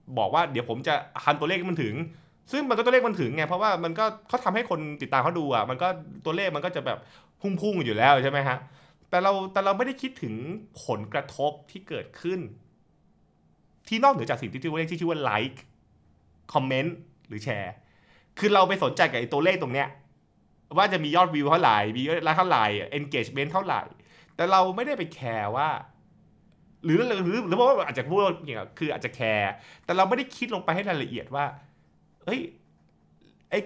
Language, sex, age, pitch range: Thai, male, 20-39, 125-185 Hz